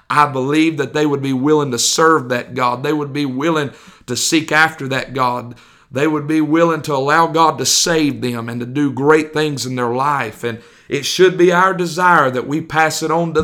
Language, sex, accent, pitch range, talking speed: English, male, American, 125-155 Hz, 225 wpm